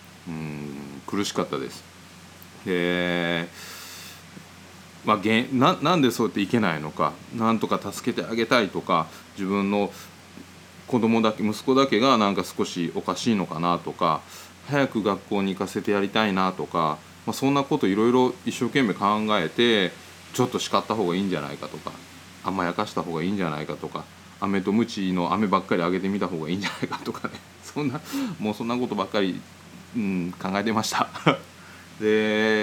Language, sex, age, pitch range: Japanese, male, 20-39, 85-105 Hz